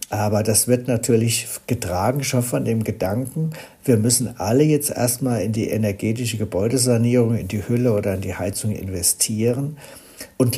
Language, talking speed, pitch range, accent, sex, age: German, 155 wpm, 105-120 Hz, German, male, 60-79